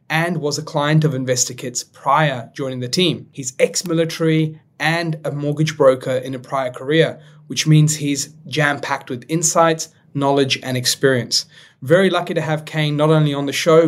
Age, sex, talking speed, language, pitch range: 30-49, male, 170 wpm, English, 130-160 Hz